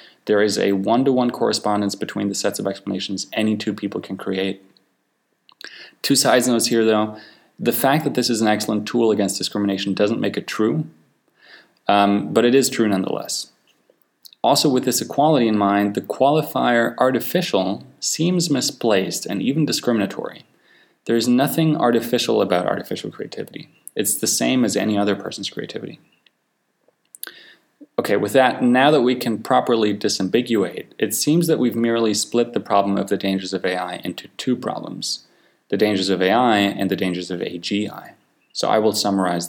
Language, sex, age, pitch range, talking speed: English, male, 20-39, 95-115 Hz, 165 wpm